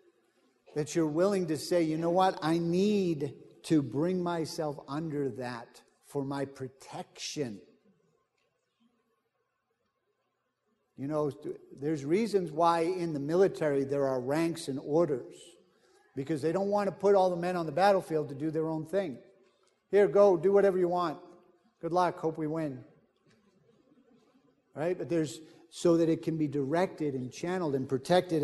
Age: 50-69